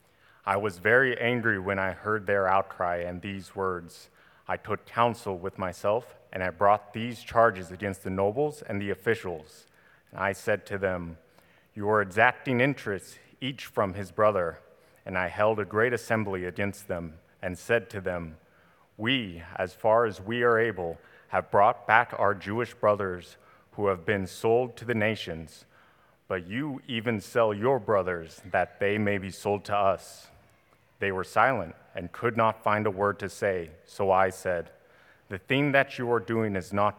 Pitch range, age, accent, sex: 95-110 Hz, 30-49, American, male